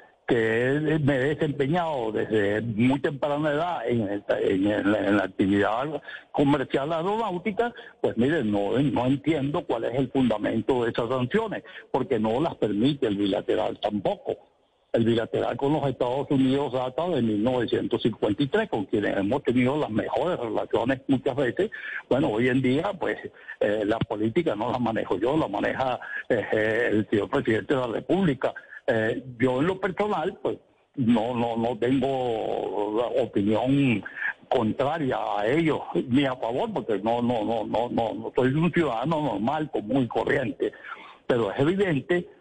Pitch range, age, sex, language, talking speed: 120-160 Hz, 60-79, male, Spanish, 150 wpm